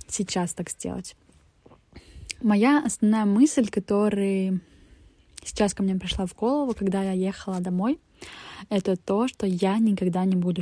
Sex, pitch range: female, 185-215 Hz